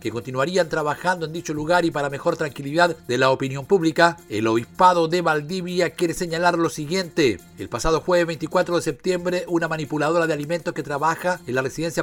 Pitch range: 145-180 Hz